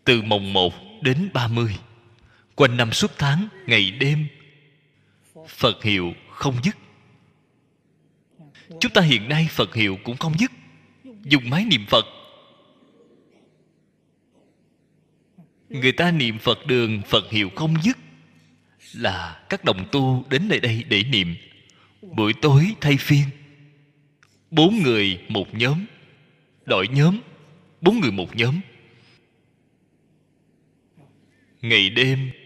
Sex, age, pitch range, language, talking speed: male, 20-39, 105-155 Hz, Vietnamese, 115 wpm